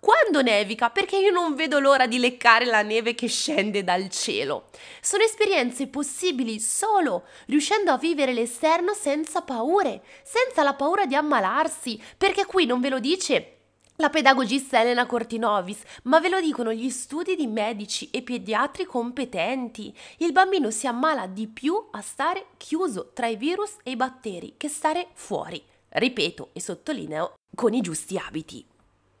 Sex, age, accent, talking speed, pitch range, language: female, 20-39, native, 155 wpm, 230-330 Hz, Italian